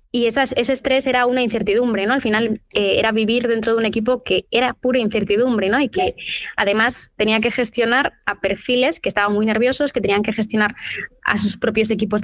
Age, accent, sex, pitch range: 20-39, Spanish, female, 205-245 Hz